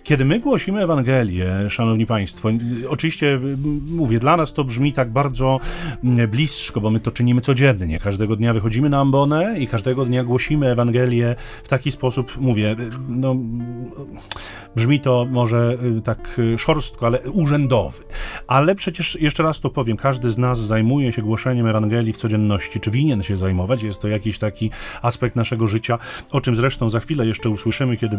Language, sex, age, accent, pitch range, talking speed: Polish, male, 40-59, native, 110-145 Hz, 160 wpm